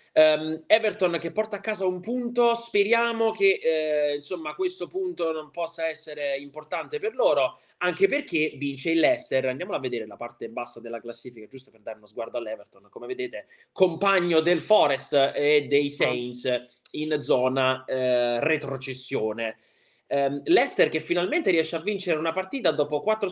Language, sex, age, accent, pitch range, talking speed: Italian, male, 20-39, native, 135-210 Hz, 160 wpm